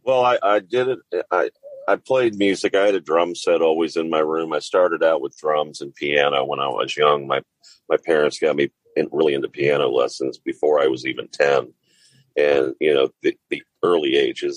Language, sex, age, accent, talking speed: English, male, 40-59, American, 205 wpm